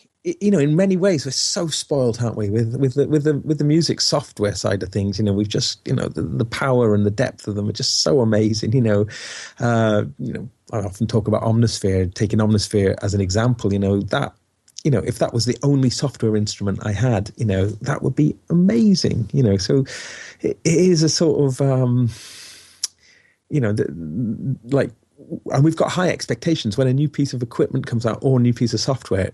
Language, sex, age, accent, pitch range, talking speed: English, male, 30-49, British, 105-135 Hz, 220 wpm